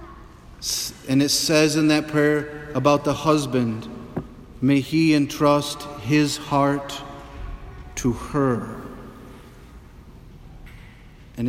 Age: 40-59